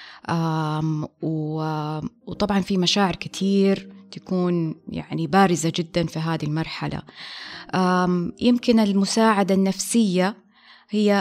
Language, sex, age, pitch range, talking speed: Arabic, female, 20-39, 165-220 Hz, 80 wpm